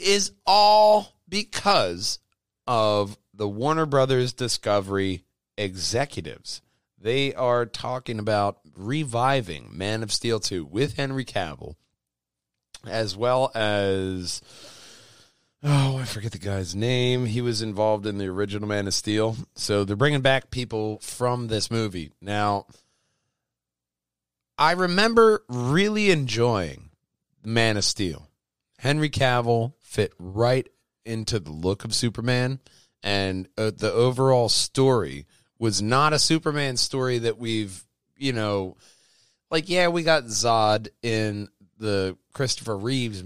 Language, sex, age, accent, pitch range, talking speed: English, male, 30-49, American, 100-135 Hz, 120 wpm